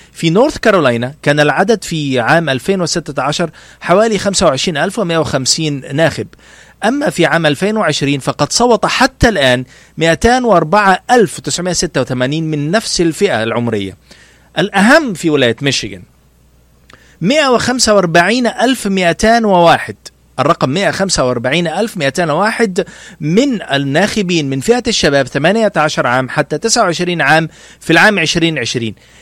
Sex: male